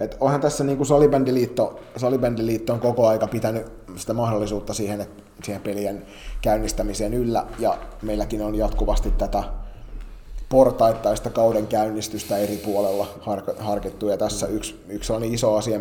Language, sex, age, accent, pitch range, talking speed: Finnish, male, 30-49, native, 100-115 Hz, 135 wpm